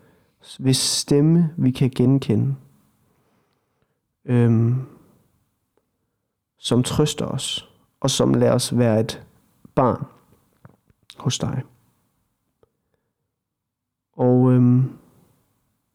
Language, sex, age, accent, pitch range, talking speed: Danish, male, 30-49, native, 115-135 Hz, 70 wpm